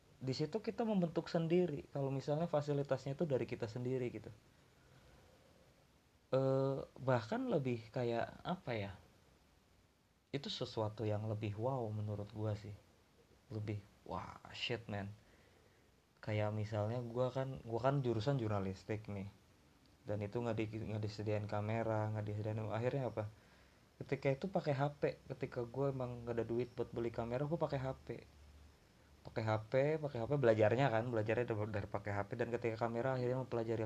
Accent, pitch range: native, 110-135 Hz